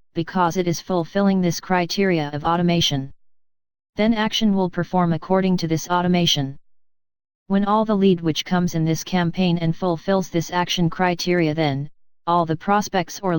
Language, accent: English, American